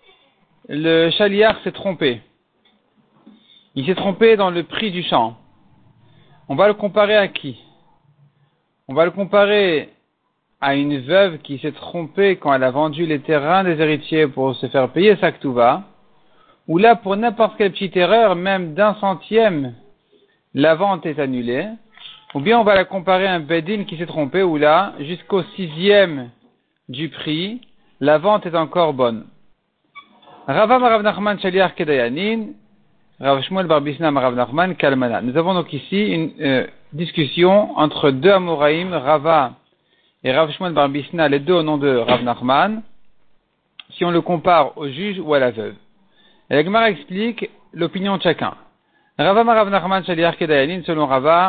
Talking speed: 155 wpm